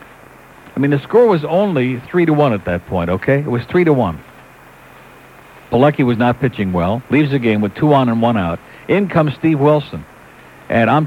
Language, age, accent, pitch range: English, 60-79, American, 115-155 Hz